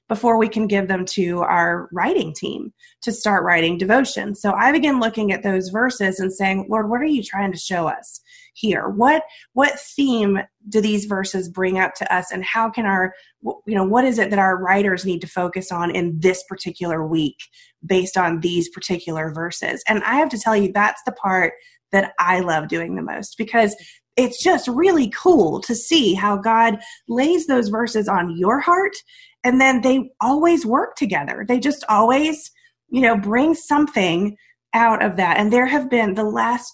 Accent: American